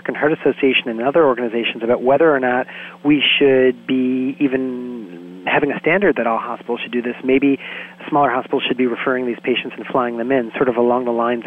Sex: male